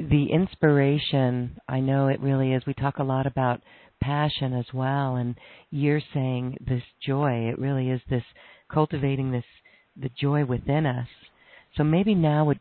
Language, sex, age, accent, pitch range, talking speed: English, female, 50-69, American, 130-150 Hz, 160 wpm